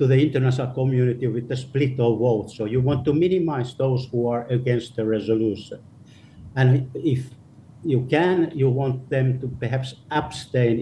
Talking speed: 165 wpm